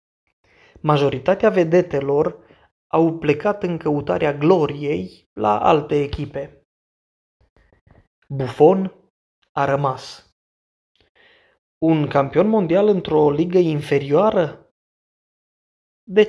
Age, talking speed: 20-39, 75 wpm